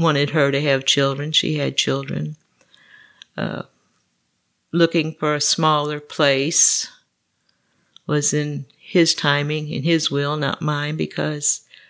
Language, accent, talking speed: English, American, 120 wpm